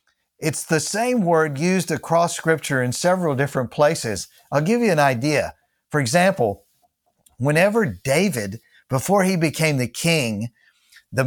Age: 50-69